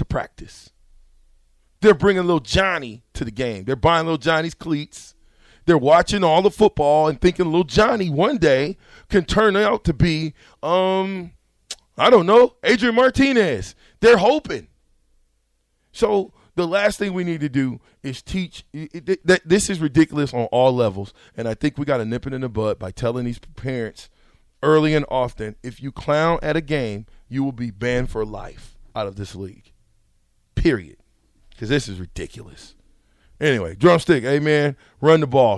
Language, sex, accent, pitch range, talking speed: English, male, American, 95-160 Hz, 170 wpm